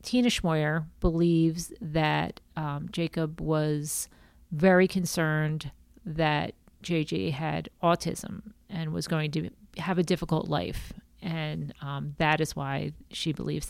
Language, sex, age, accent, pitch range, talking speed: English, female, 40-59, American, 145-170 Hz, 125 wpm